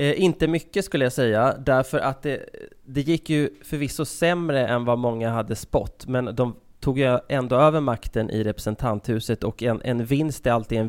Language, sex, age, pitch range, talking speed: English, male, 20-39, 110-130 Hz, 185 wpm